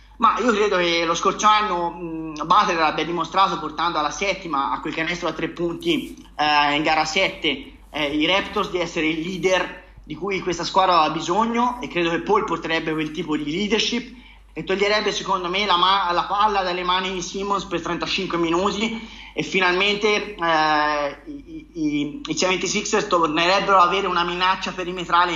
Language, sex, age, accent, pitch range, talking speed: Italian, male, 30-49, native, 170-225 Hz, 170 wpm